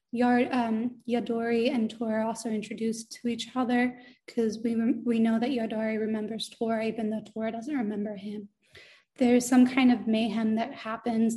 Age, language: 20-39, English